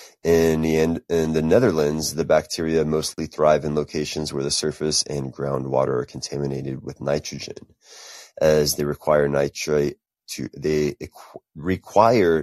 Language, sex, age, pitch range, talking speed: English, male, 30-49, 70-80 Hz, 130 wpm